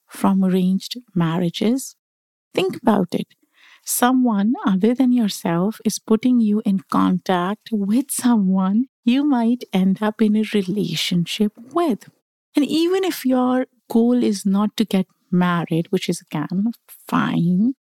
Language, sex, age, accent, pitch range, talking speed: English, female, 50-69, Indian, 190-240 Hz, 130 wpm